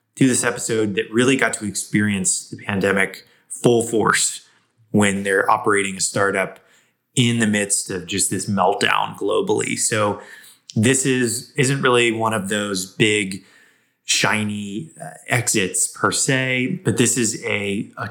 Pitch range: 100-125 Hz